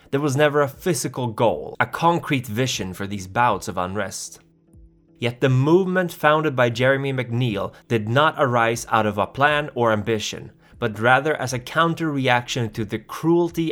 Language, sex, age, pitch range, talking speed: English, male, 20-39, 105-140 Hz, 165 wpm